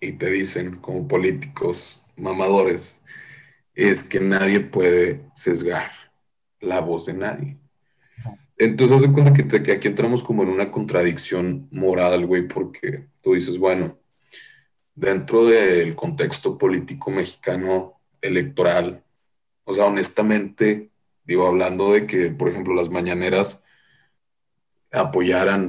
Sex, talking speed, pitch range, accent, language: male, 120 wpm, 90-120 Hz, Mexican, Spanish